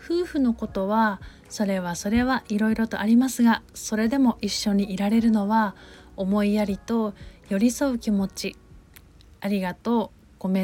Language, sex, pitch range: Japanese, female, 205-240 Hz